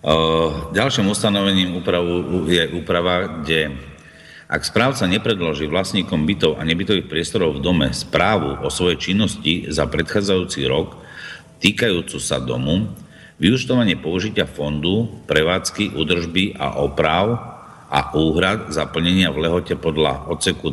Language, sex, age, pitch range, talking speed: Slovak, male, 50-69, 80-95 Hz, 115 wpm